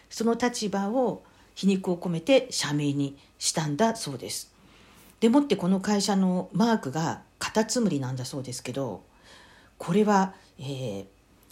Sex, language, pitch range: female, Japanese, 135-195 Hz